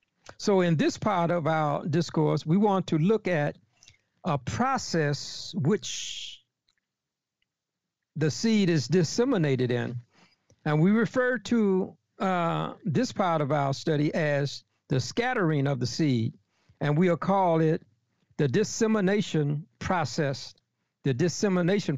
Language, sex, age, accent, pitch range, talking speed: English, male, 60-79, American, 135-180 Hz, 125 wpm